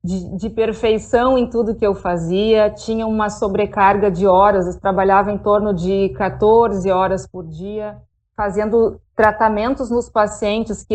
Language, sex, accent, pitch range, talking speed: Portuguese, female, Brazilian, 205-250 Hz, 150 wpm